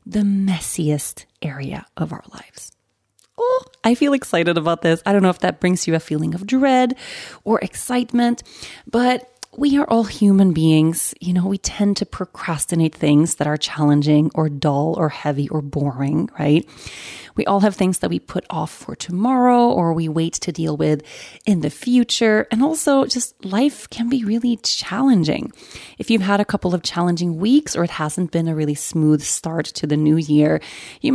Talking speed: 185 wpm